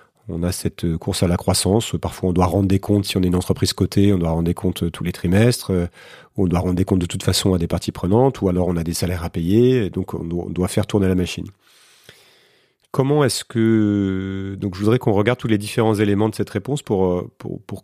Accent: French